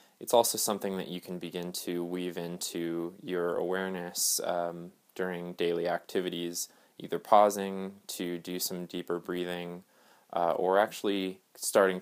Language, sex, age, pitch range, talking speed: English, male, 20-39, 85-95 Hz, 135 wpm